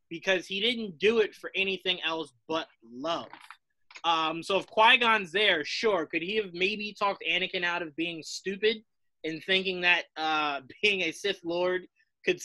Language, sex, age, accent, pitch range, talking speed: English, male, 20-39, American, 135-190 Hz, 170 wpm